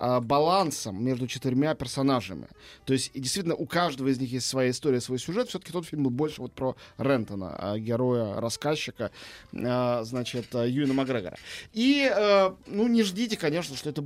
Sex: male